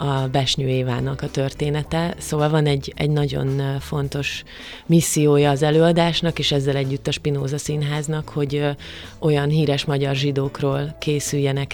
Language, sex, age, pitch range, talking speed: Hungarian, female, 30-49, 135-150 Hz, 135 wpm